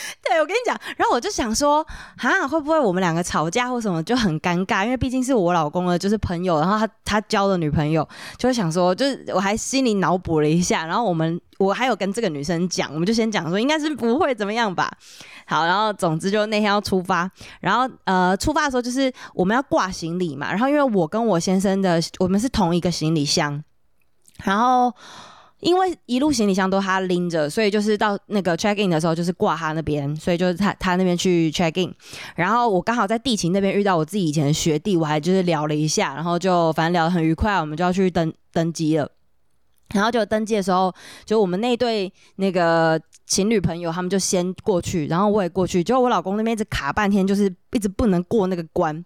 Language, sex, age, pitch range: Chinese, female, 20-39, 170-220 Hz